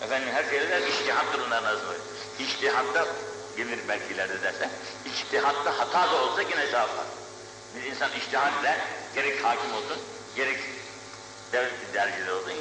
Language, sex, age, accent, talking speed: Turkish, male, 60-79, native, 125 wpm